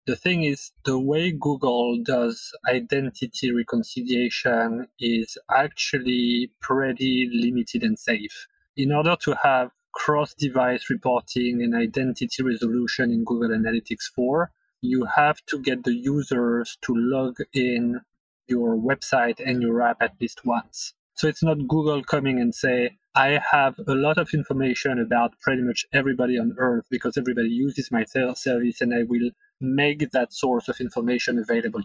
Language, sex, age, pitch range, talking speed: English, male, 30-49, 120-145 Hz, 145 wpm